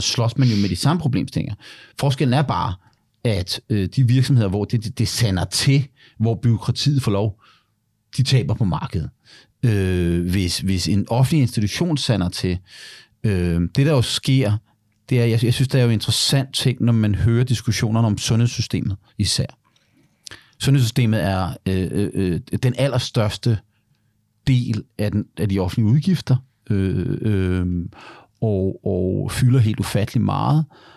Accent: native